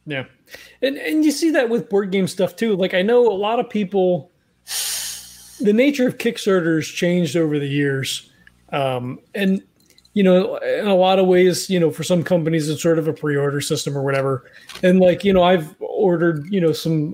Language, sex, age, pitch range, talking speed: English, male, 30-49, 160-230 Hz, 200 wpm